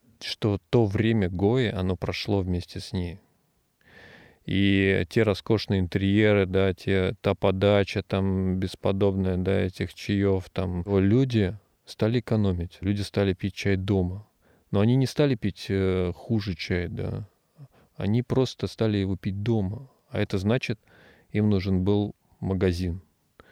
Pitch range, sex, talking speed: 95-110 Hz, male, 140 wpm